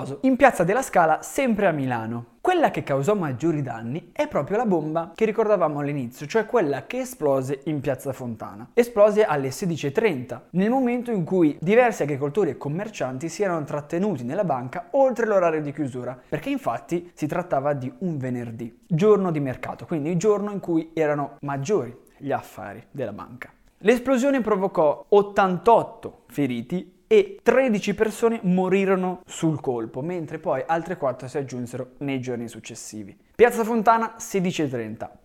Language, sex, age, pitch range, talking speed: Italian, male, 20-39, 135-210 Hz, 150 wpm